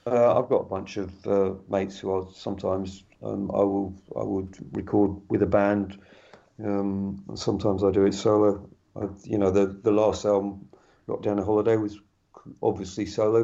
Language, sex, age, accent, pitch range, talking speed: English, male, 50-69, British, 100-110 Hz, 180 wpm